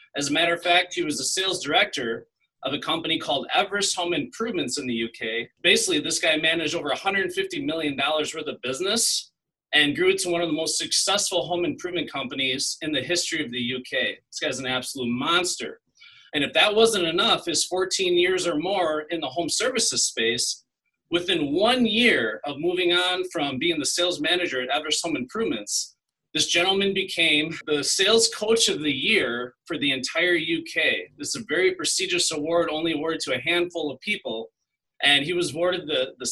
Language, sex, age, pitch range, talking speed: English, male, 30-49, 150-195 Hz, 190 wpm